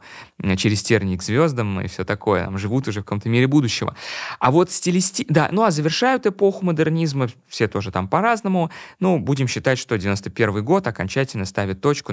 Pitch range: 105-140 Hz